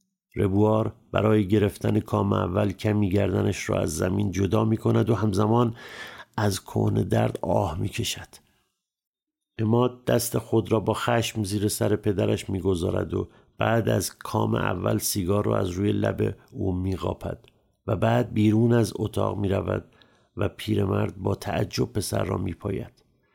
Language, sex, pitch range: Persian, male, 100-115 Hz